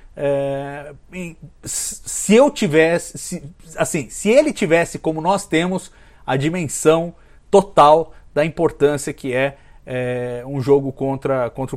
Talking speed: 120 wpm